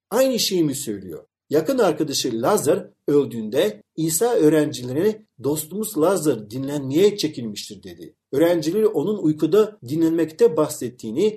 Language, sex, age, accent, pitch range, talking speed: Turkish, male, 50-69, native, 135-210 Hz, 105 wpm